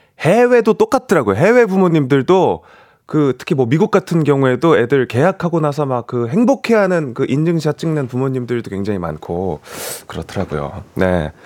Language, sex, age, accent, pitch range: Korean, male, 30-49, native, 115-190 Hz